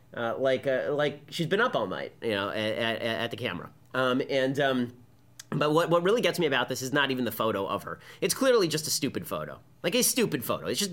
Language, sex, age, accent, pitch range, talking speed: English, male, 30-49, American, 125-170 Hz, 255 wpm